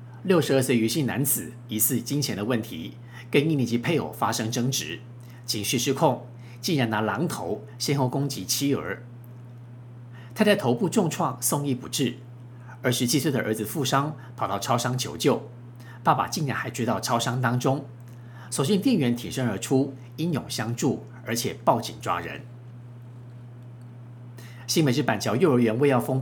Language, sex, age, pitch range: Chinese, male, 50-69, 120-135 Hz